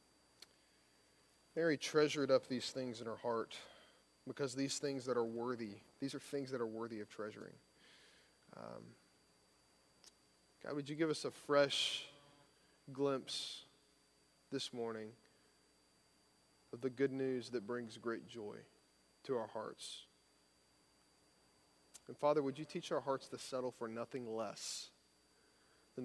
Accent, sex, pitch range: American, male, 105-165 Hz